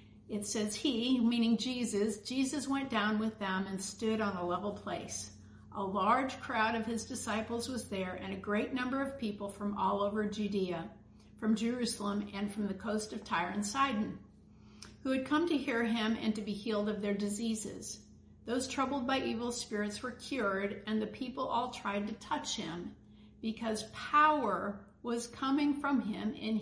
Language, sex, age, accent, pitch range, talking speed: English, female, 50-69, American, 200-240 Hz, 180 wpm